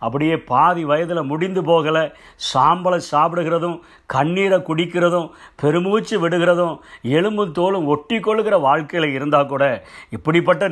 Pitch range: 140-175 Hz